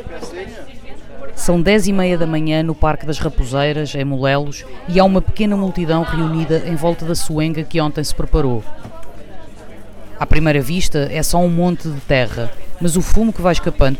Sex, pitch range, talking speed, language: female, 140-165 Hz, 175 wpm, Portuguese